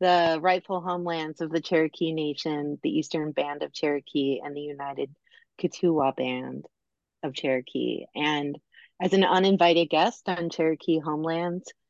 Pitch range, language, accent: 155-210 Hz, English, American